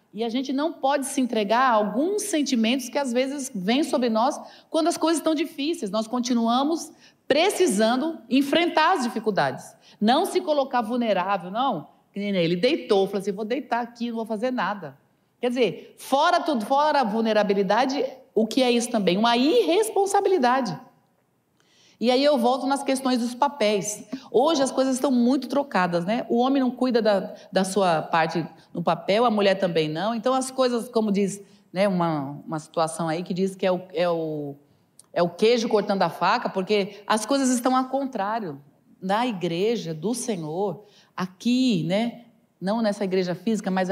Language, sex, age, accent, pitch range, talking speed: Portuguese, female, 40-59, Brazilian, 195-255 Hz, 165 wpm